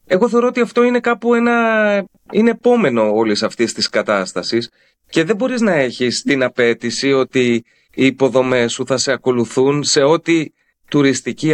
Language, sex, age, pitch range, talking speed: Greek, male, 30-49, 125-175 Hz, 155 wpm